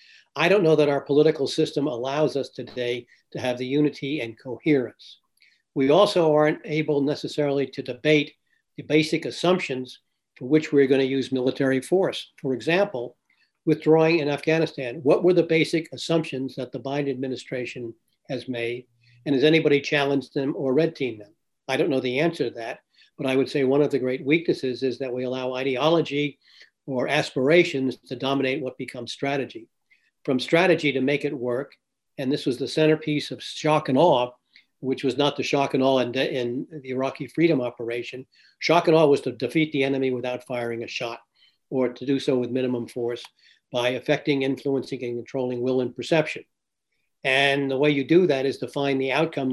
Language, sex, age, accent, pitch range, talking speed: English, male, 60-79, American, 125-150 Hz, 185 wpm